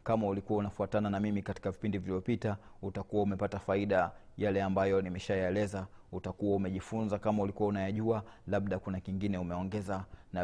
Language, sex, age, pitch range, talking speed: Swahili, male, 30-49, 95-105 Hz, 140 wpm